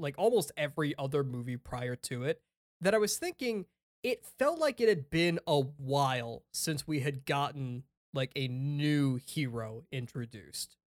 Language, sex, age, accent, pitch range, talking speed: English, male, 20-39, American, 130-170 Hz, 160 wpm